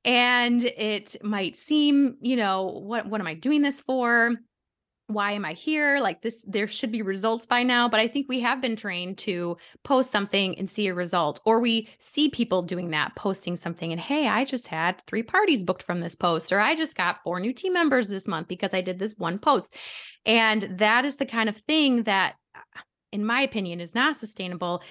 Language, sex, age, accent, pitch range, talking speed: English, female, 20-39, American, 180-235 Hz, 210 wpm